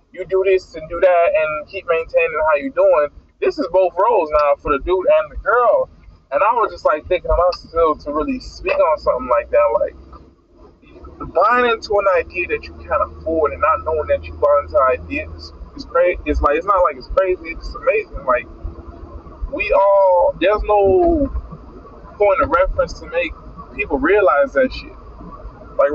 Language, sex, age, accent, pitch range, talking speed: English, male, 20-39, American, 180-295 Hz, 190 wpm